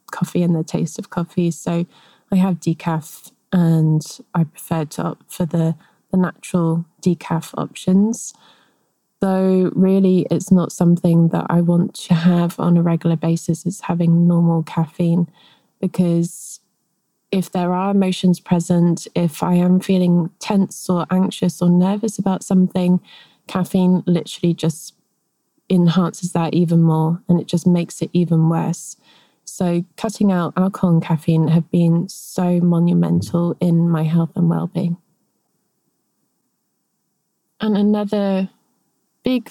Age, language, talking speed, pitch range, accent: 20-39, English, 135 wpm, 170-195 Hz, British